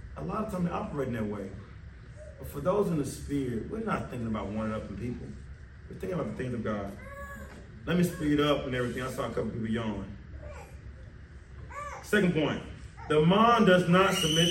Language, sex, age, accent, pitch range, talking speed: English, male, 30-49, American, 110-170 Hz, 205 wpm